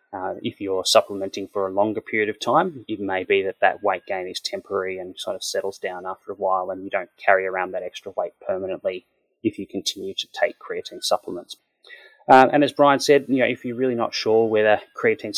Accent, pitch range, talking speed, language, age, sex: Australian, 95-130 Hz, 220 wpm, English, 20-39, male